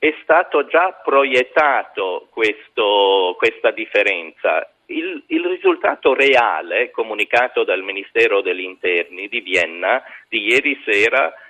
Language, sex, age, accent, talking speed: Italian, male, 40-59, native, 110 wpm